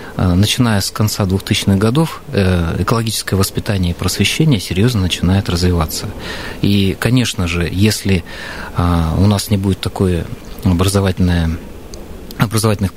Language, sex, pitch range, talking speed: Russian, male, 90-110 Hz, 110 wpm